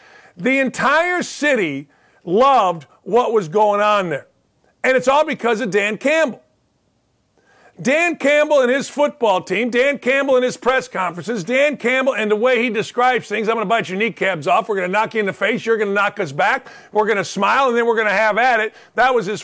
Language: English